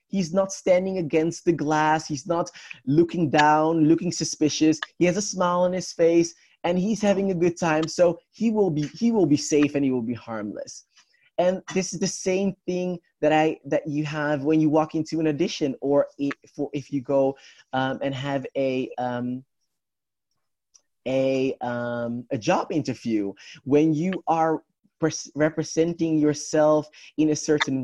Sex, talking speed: male, 165 wpm